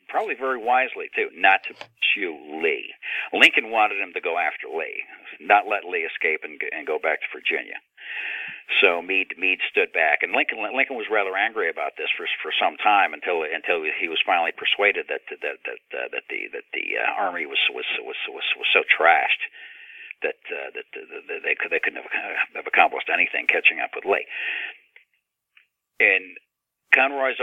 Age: 50-69